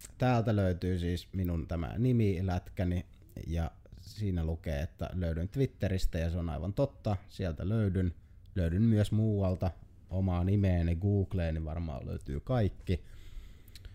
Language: Finnish